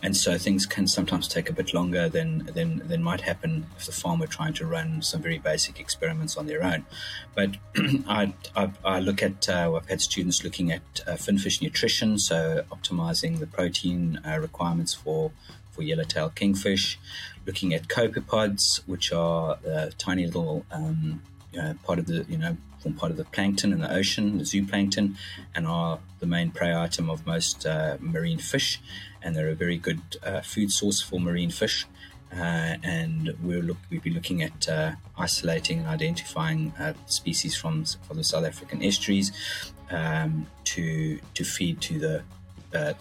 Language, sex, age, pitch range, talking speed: English, male, 30-49, 85-140 Hz, 175 wpm